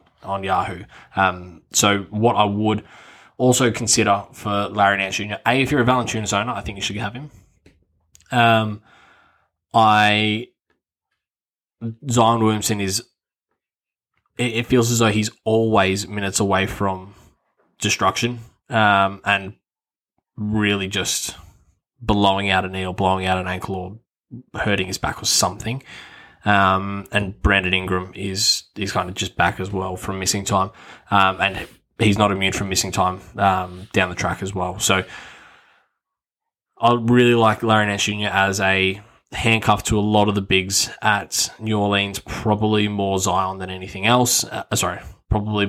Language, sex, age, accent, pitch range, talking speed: English, male, 20-39, Australian, 95-110 Hz, 155 wpm